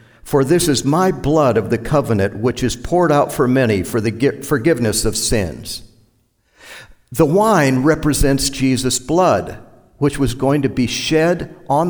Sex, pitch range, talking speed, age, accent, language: male, 115-150 Hz, 155 wpm, 50-69, American, English